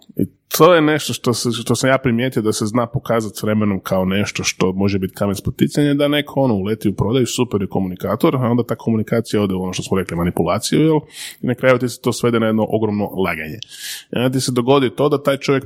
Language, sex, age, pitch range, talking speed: Croatian, male, 20-39, 100-125 Hz, 240 wpm